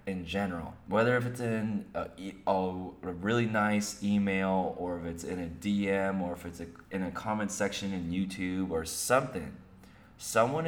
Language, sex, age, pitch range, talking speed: English, male, 20-39, 85-100 Hz, 170 wpm